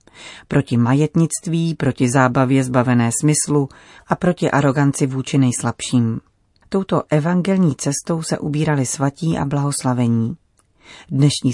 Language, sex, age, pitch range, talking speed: Czech, female, 30-49, 130-160 Hz, 105 wpm